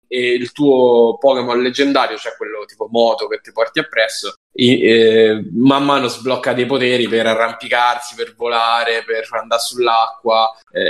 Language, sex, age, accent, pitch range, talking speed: Italian, male, 10-29, native, 115-130 Hz, 155 wpm